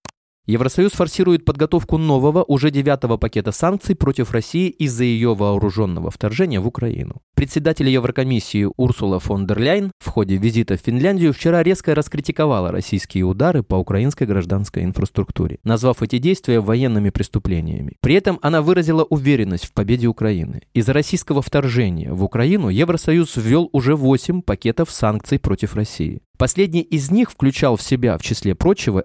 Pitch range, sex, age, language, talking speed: 105-150 Hz, male, 20-39, Russian, 145 wpm